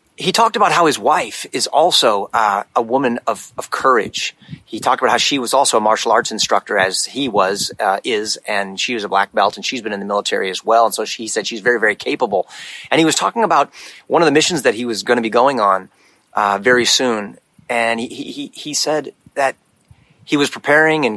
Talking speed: 235 wpm